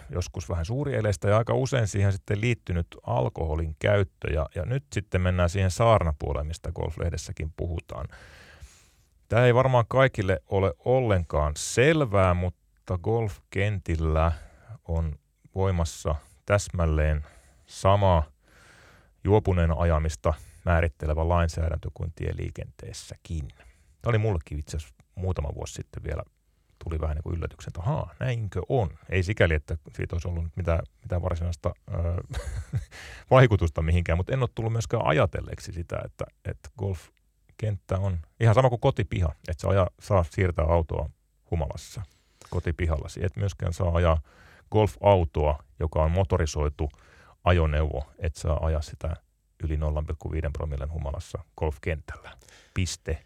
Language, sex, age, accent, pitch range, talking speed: Finnish, male, 30-49, native, 80-100 Hz, 120 wpm